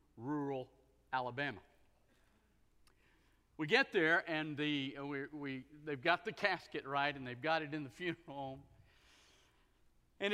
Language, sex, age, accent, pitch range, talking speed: English, male, 50-69, American, 130-180 Hz, 135 wpm